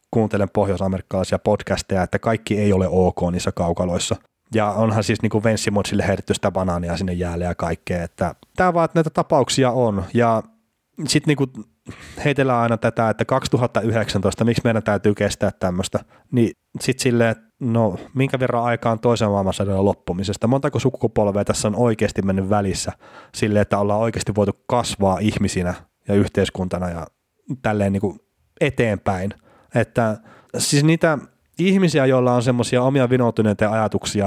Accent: native